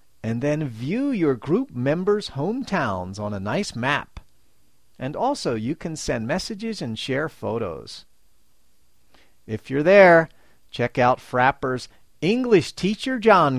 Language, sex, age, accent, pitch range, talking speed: English, male, 40-59, American, 115-185 Hz, 130 wpm